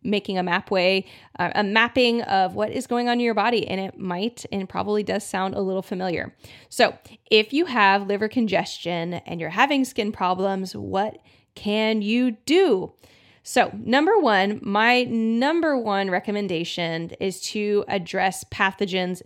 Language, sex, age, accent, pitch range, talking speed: English, female, 20-39, American, 195-245 Hz, 160 wpm